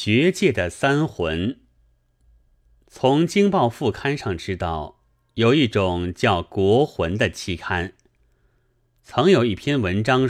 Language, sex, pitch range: Chinese, male, 90-125 Hz